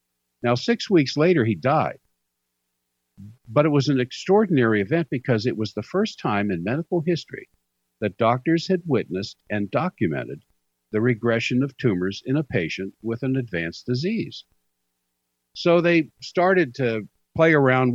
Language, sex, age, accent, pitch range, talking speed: English, male, 60-79, American, 85-130 Hz, 145 wpm